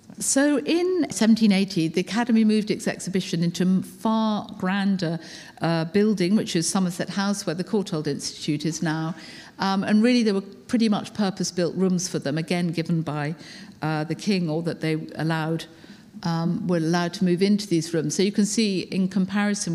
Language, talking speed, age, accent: English, 180 wpm, 50-69, British